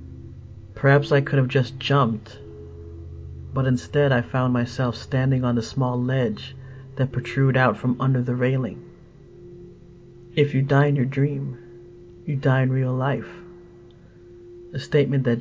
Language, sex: English, male